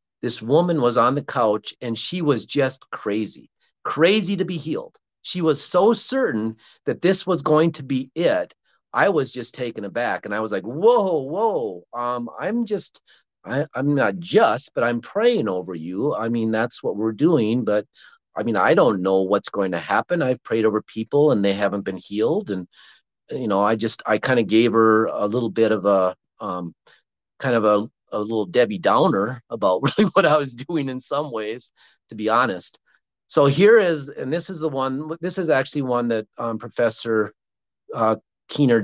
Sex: male